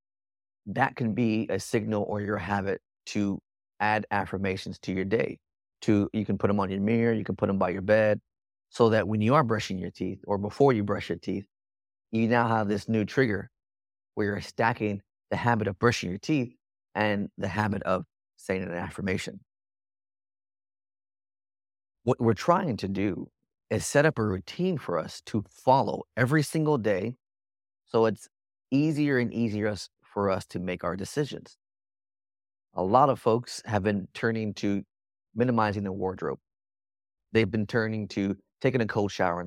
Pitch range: 100-115 Hz